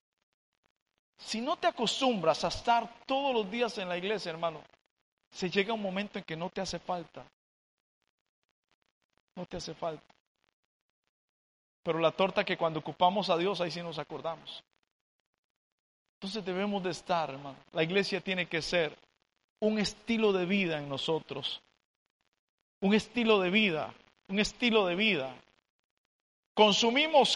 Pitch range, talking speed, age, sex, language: 160-210 Hz, 140 wpm, 50-69, male, Spanish